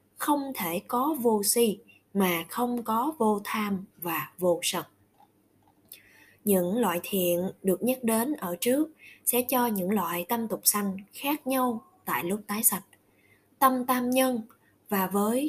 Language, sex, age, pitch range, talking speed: Vietnamese, female, 20-39, 180-250 Hz, 150 wpm